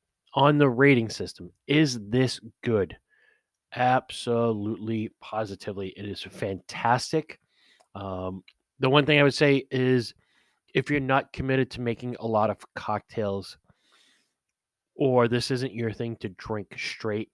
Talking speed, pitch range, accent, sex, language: 130 wpm, 100-130 Hz, American, male, English